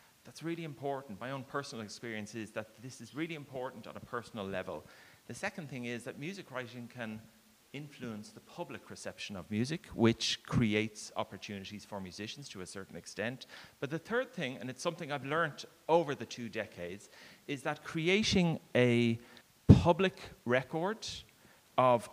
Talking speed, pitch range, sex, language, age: 165 wpm, 115-155 Hz, male, English, 30-49